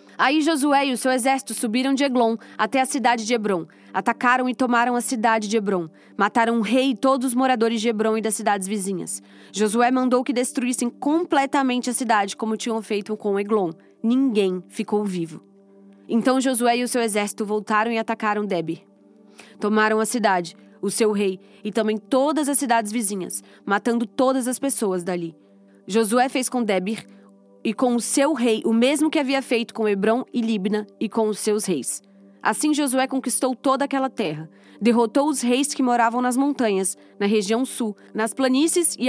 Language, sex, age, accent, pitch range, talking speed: Portuguese, female, 20-39, Brazilian, 200-255 Hz, 180 wpm